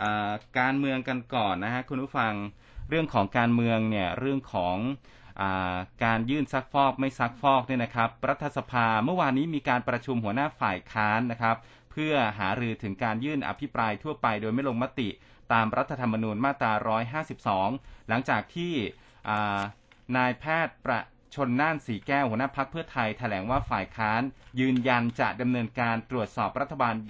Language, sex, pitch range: Thai, male, 110-140 Hz